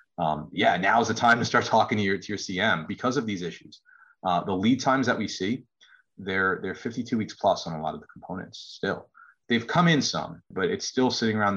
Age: 30-49